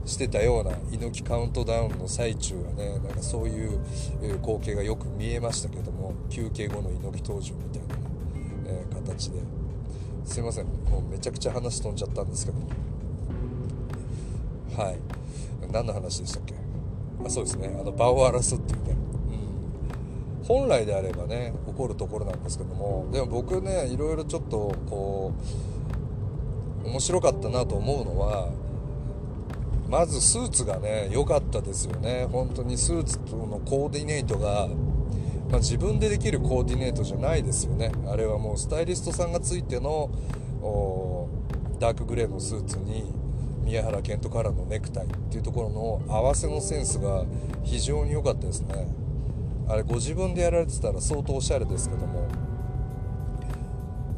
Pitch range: 105-125 Hz